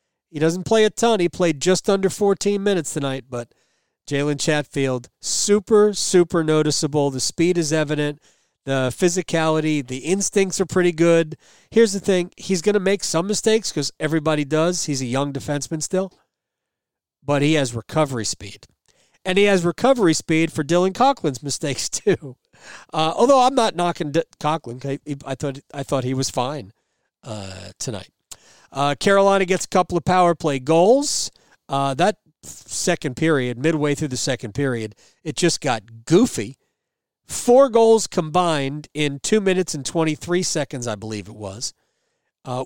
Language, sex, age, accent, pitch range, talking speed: English, male, 40-59, American, 135-180 Hz, 160 wpm